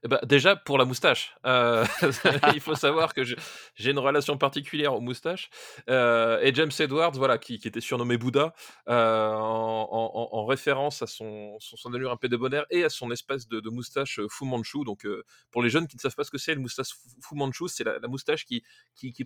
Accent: French